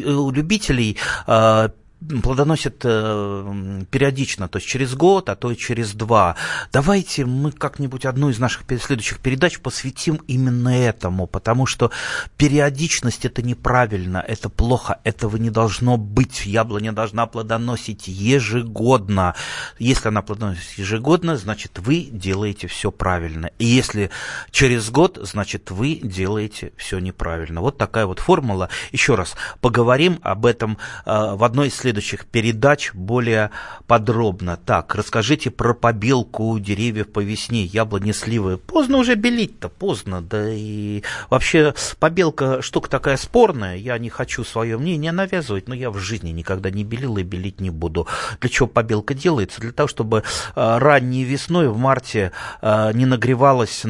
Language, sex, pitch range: Russian, male, 105-130 Hz